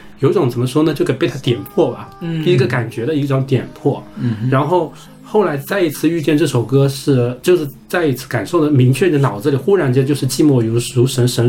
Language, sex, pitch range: Chinese, male, 120-150 Hz